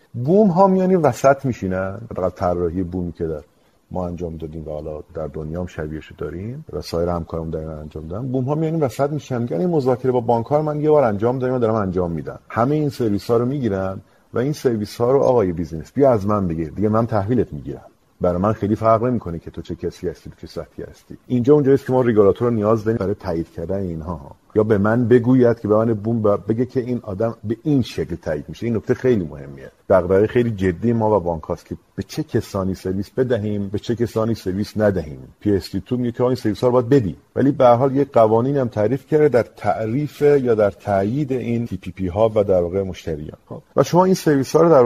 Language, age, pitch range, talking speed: Persian, 50-69, 95-125 Hz, 220 wpm